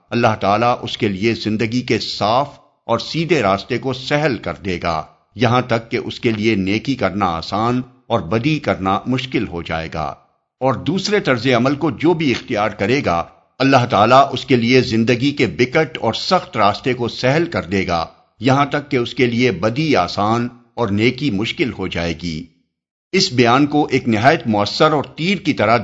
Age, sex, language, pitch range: 50-69, male, Urdu, 100-135 Hz